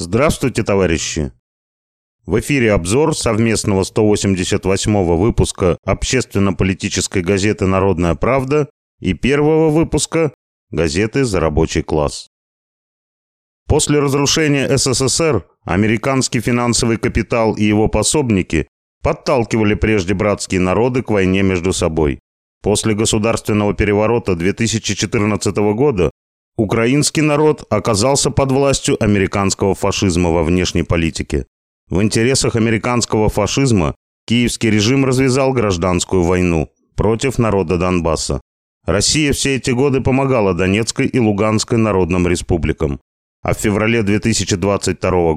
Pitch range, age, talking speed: 90-120 Hz, 30-49, 100 wpm